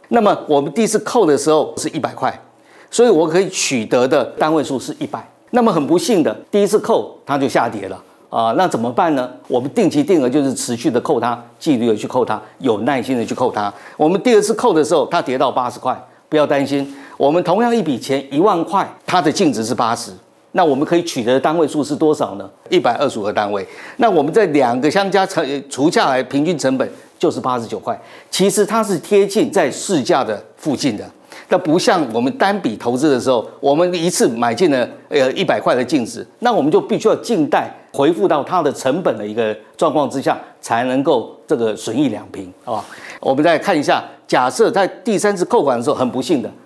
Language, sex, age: Chinese, male, 50-69